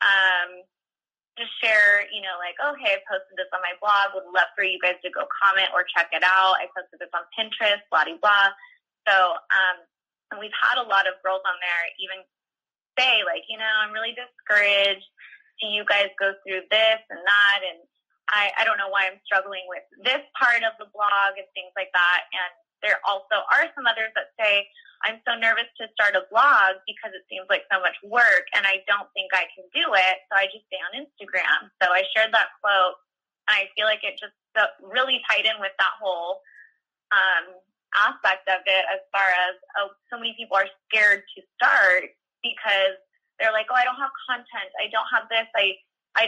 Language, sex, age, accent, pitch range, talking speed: English, female, 20-39, American, 190-225 Hz, 210 wpm